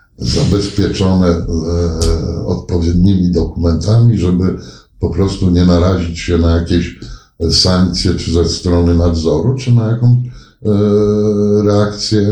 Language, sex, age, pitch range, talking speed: Polish, male, 60-79, 90-110 Hz, 105 wpm